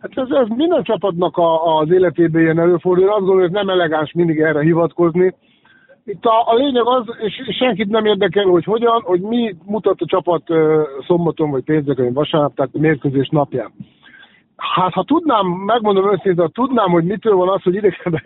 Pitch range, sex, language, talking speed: 165-205 Hz, male, Hungarian, 180 wpm